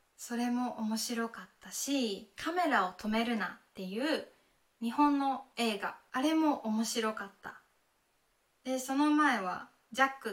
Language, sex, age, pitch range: Japanese, female, 20-39, 210-270 Hz